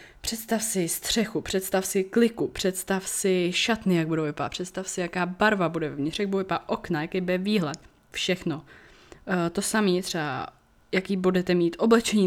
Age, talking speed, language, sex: 20-39, 160 wpm, Czech, female